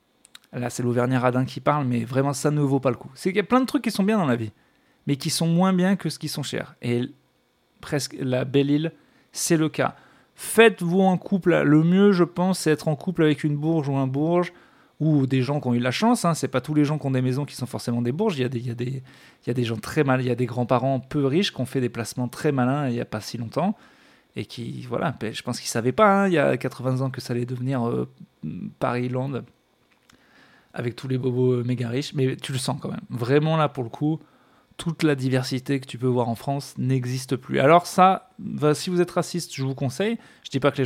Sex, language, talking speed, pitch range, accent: male, French, 250 wpm, 125-170 Hz, French